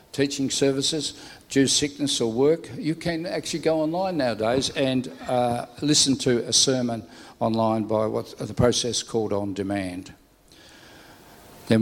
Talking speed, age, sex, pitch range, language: 135 wpm, 60-79, male, 110-135 Hz, English